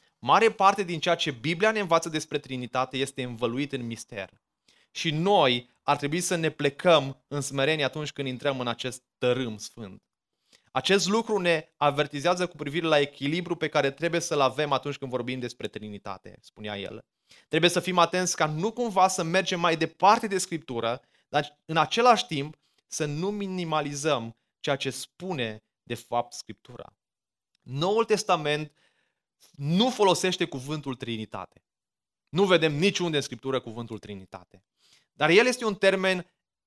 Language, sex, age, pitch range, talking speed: Romanian, male, 20-39, 130-175 Hz, 155 wpm